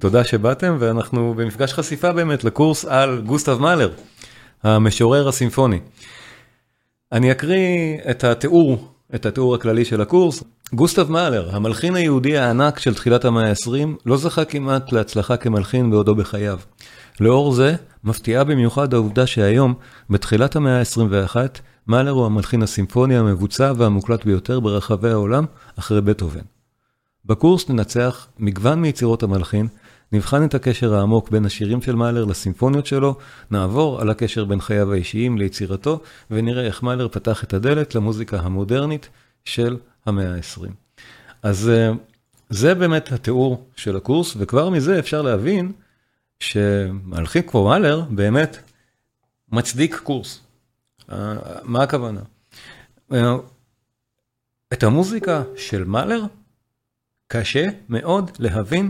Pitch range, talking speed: 110-135 Hz, 120 wpm